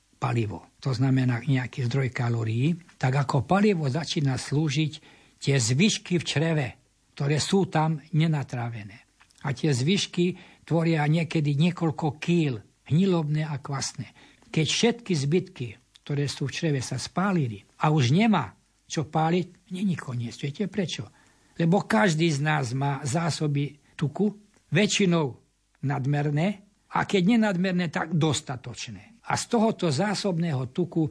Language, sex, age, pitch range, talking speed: Slovak, male, 60-79, 130-170 Hz, 130 wpm